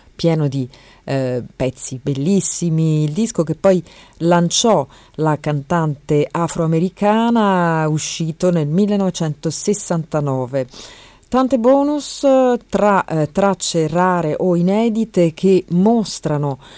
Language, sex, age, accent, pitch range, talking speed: Italian, female, 40-59, native, 140-185 Hz, 95 wpm